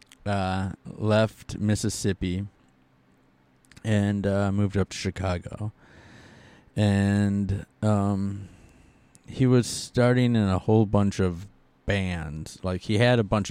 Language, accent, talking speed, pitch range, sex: English, American, 110 wpm, 90-110 Hz, male